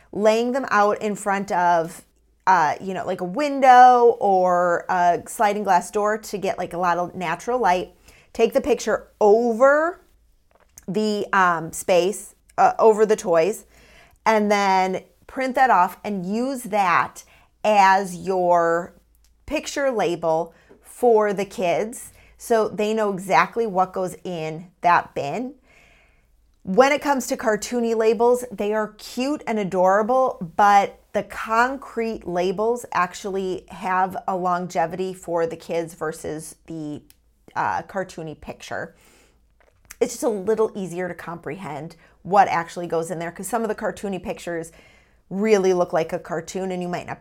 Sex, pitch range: female, 175-230 Hz